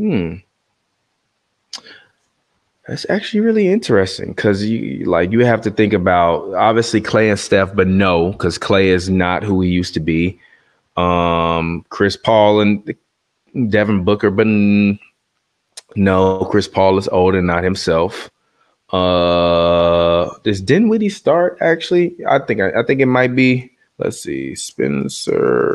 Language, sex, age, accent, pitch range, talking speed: English, male, 20-39, American, 90-110 Hz, 135 wpm